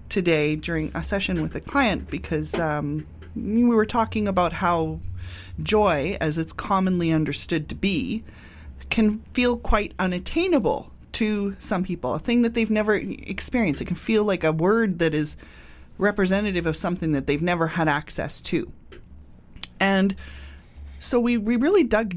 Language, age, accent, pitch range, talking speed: English, 20-39, American, 155-220 Hz, 155 wpm